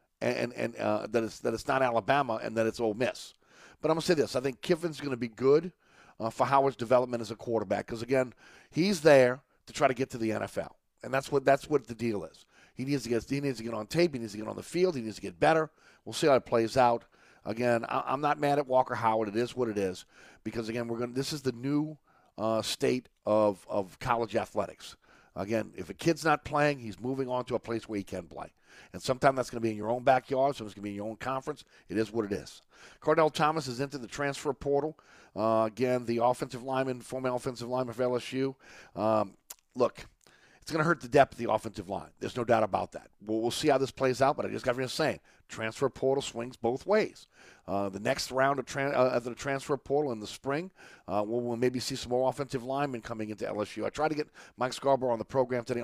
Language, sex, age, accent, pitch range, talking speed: English, male, 40-59, American, 110-140 Hz, 255 wpm